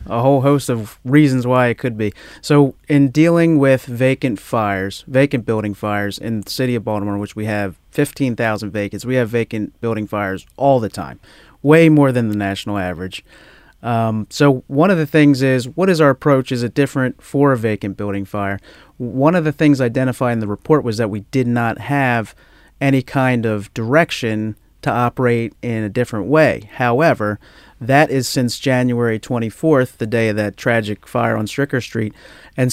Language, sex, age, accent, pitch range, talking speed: English, male, 30-49, American, 105-135 Hz, 185 wpm